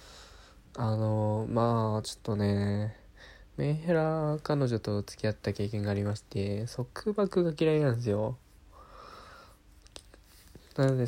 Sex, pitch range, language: male, 100-135 Hz, Japanese